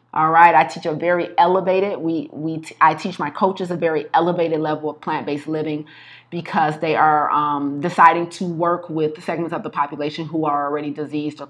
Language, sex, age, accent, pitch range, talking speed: English, female, 30-49, American, 150-175 Hz, 200 wpm